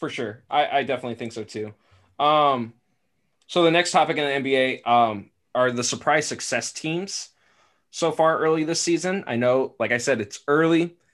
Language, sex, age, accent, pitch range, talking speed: English, male, 20-39, American, 110-140 Hz, 185 wpm